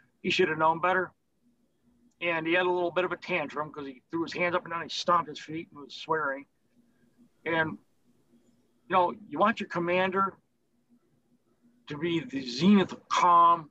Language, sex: English, male